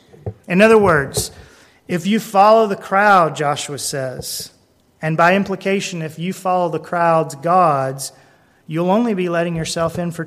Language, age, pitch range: English, 30-49, 145-175 Hz